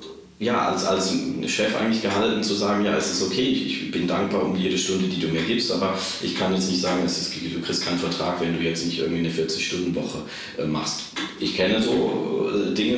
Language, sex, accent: German, male, German